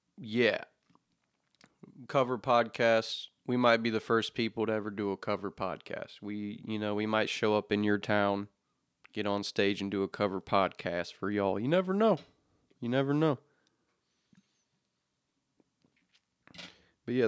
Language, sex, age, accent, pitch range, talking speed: English, male, 20-39, American, 105-120 Hz, 150 wpm